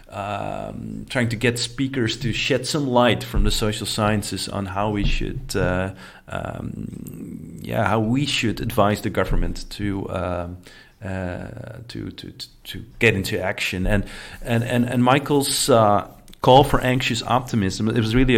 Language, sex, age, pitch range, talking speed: English, male, 40-59, 100-120 Hz, 155 wpm